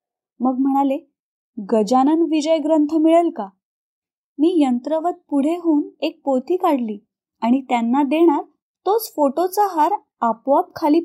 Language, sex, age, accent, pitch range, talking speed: Marathi, female, 20-39, native, 235-320 Hz, 120 wpm